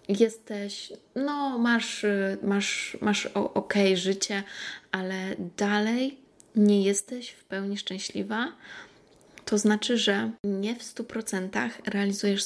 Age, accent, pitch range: 20-39, native, 195-225 Hz